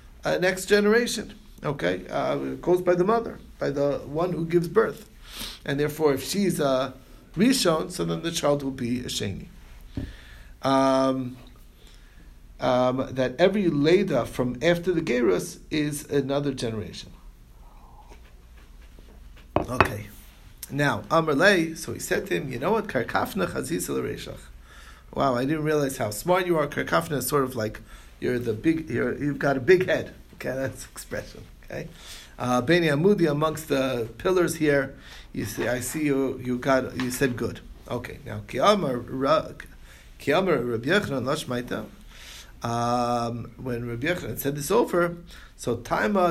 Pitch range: 120-160 Hz